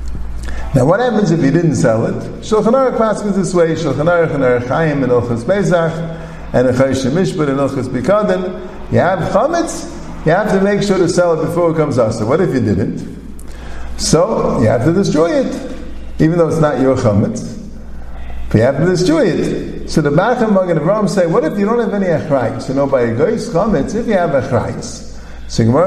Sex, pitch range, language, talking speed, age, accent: male, 145-210 Hz, English, 210 wpm, 50-69, American